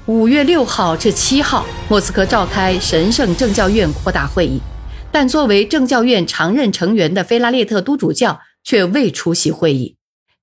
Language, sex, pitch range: Chinese, female, 175-250 Hz